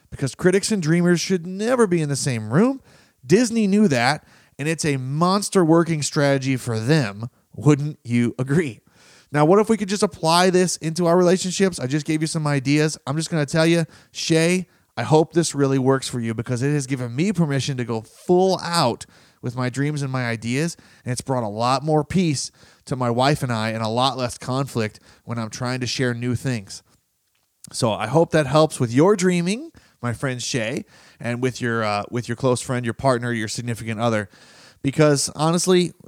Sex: male